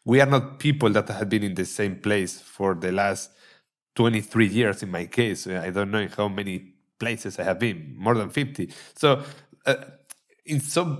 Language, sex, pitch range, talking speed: English, male, 95-125 Hz, 185 wpm